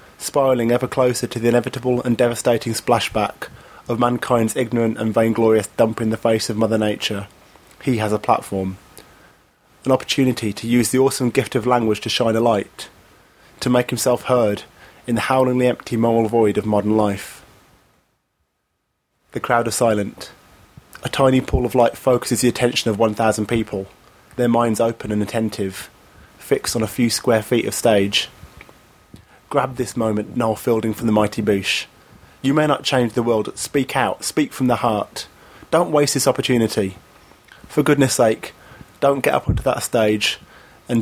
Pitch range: 110-130 Hz